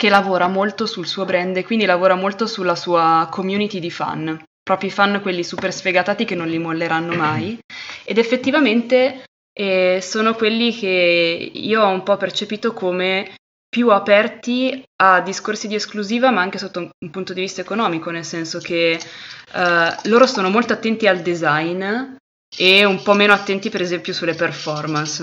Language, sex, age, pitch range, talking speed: Italian, female, 20-39, 170-215 Hz, 170 wpm